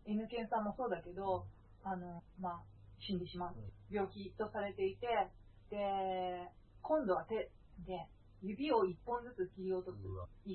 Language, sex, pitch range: Japanese, female, 180-260 Hz